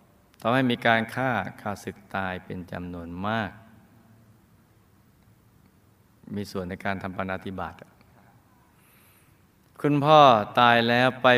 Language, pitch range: Thai, 95-110 Hz